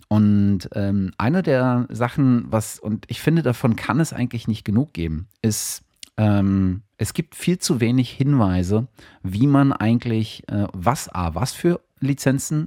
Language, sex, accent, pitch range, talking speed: German, male, German, 100-125 Hz, 155 wpm